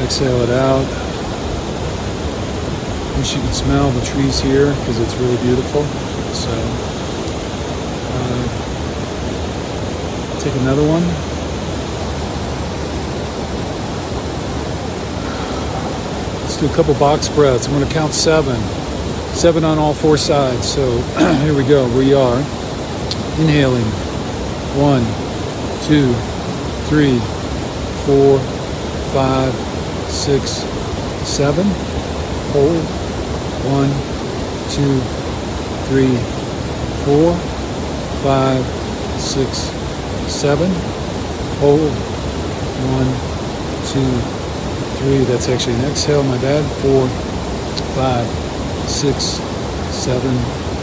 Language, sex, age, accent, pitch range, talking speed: English, male, 50-69, American, 95-140 Hz, 85 wpm